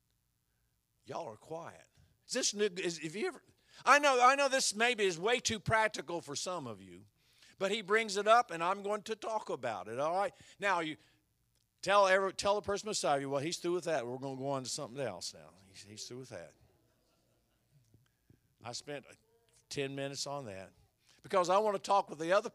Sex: male